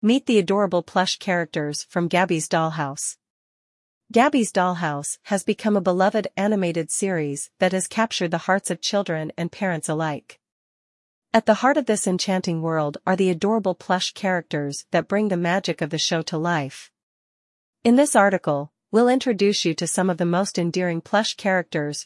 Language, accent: English, American